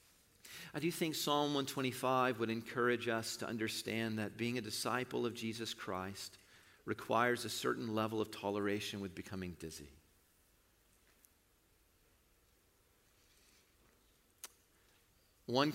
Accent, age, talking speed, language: American, 40-59, 105 wpm, English